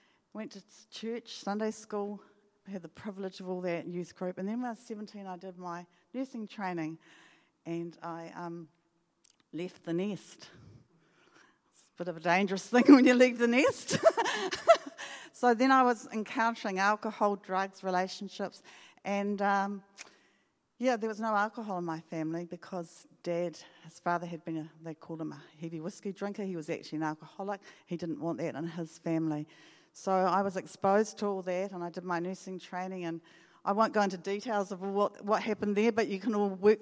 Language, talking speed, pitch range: English, 185 wpm, 175-210 Hz